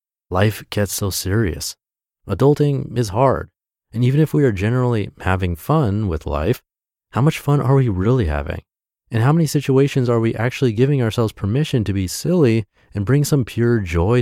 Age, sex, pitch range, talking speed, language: 30-49, male, 90-120 Hz, 175 wpm, English